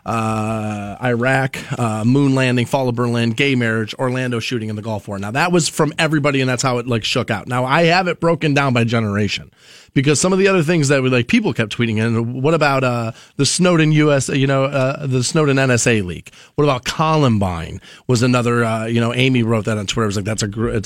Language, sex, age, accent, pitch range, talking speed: English, male, 30-49, American, 115-145 Hz, 235 wpm